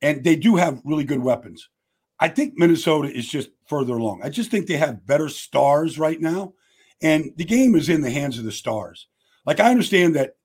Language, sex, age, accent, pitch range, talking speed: English, male, 50-69, American, 135-190 Hz, 210 wpm